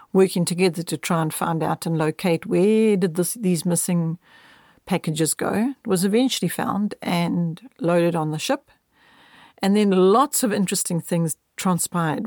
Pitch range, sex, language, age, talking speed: 180-235 Hz, female, English, 60-79, 155 wpm